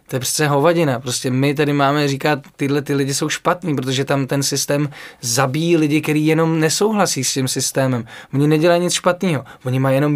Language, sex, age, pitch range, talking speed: Czech, male, 20-39, 130-155 Hz, 195 wpm